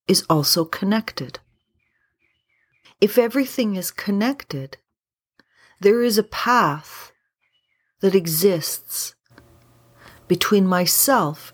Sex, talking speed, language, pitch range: female, 80 wpm, English, 135-190 Hz